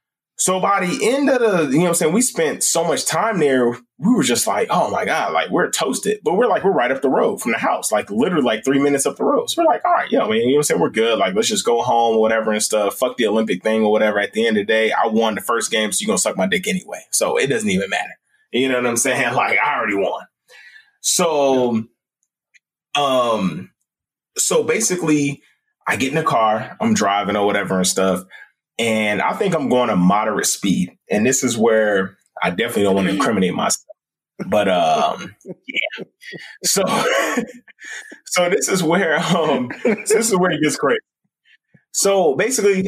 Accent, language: American, English